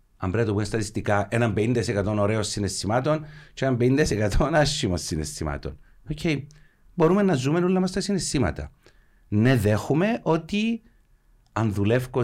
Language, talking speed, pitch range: Greek, 140 wpm, 95-115 Hz